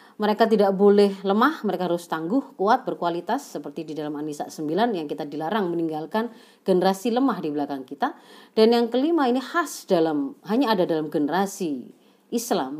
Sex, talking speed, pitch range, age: female, 160 wpm, 170-235 Hz, 30-49